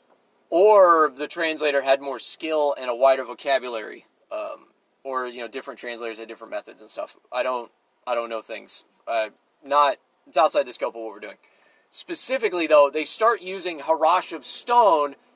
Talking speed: 175 wpm